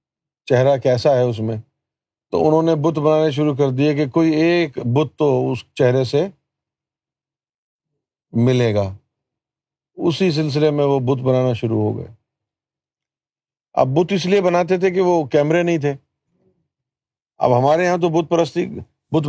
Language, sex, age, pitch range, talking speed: Urdu, male, 50-69, 130-165 Hz, 155 wpm